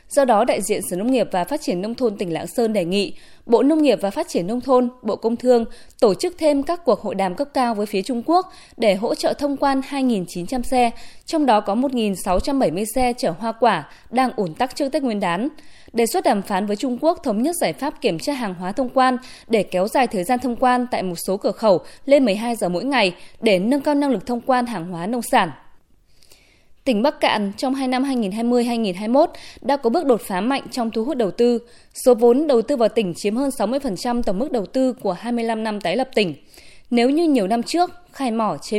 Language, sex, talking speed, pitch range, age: Vietnamese, female, 235 wpm, 210-270 Hz, 20-39